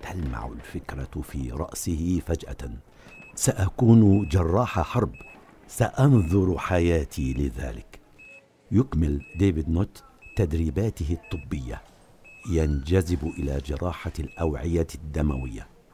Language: Arabic